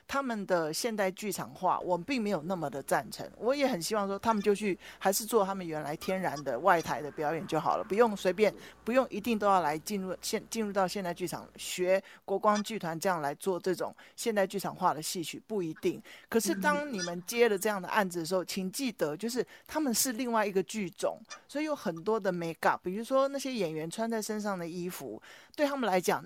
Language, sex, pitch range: Chinese, male, 180-230 Hz